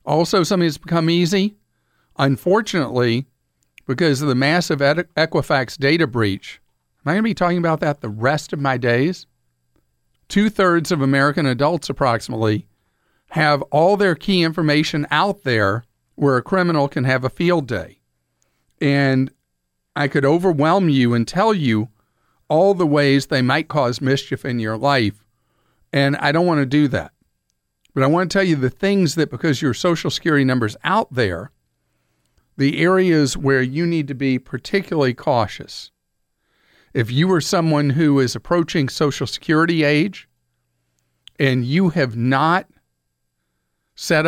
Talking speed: 150 wpm